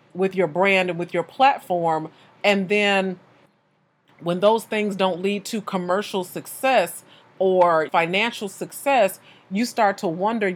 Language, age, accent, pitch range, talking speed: English, 40-59, American, 170-205 Hz, 135 wpm